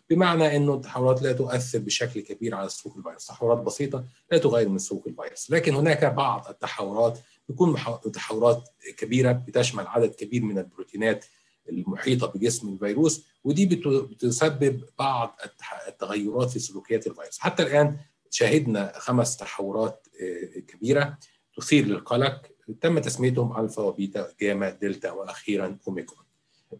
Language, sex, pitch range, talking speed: Arabic, male, 110-150 Hz, 125 wpm